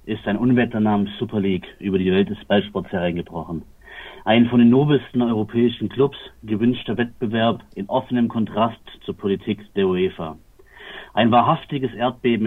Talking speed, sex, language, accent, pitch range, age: 145 wpm, male, German, German, 105-130 Hz, 50-69